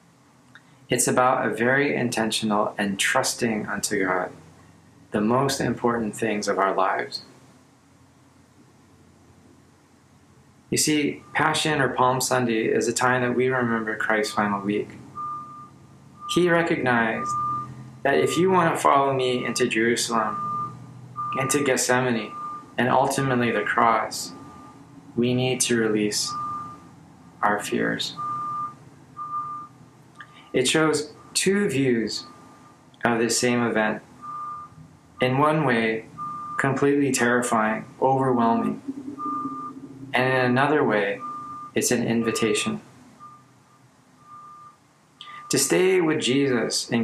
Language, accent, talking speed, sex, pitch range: English, American, 100 wpm, male, 120-155 Hz